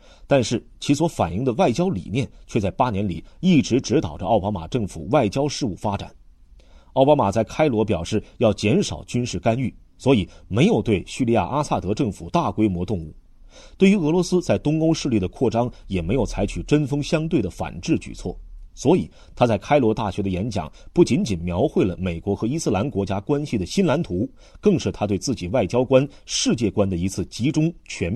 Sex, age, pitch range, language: male, 30-49, 90-135 Hz, Chinese